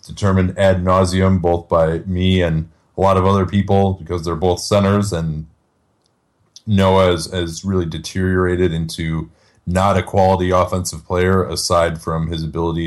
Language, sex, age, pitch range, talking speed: English, male, 30-49, 90-110 Hz, 145 wpm